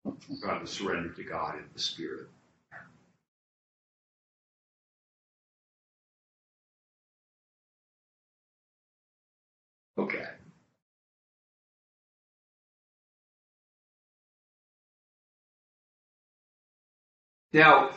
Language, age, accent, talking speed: English, 60-79, American, 35 wpm